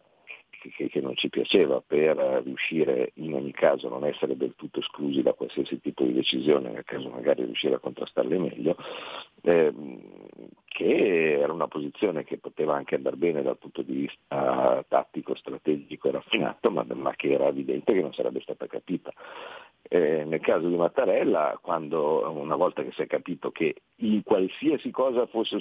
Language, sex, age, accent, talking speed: Italian, male, 50-69, native, 165 wpm